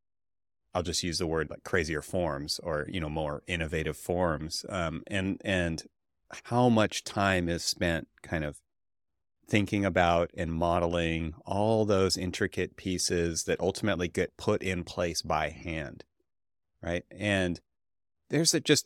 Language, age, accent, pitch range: English, 30-49, American, 85-105 Hz